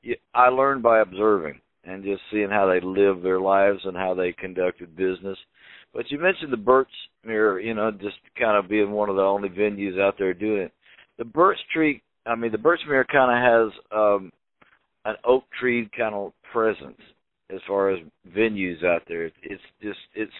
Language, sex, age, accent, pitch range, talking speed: English, male, 50-69, American, 100-120 Hz, 190 wpm